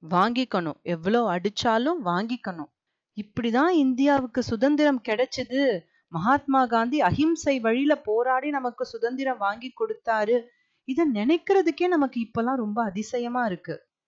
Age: 30-49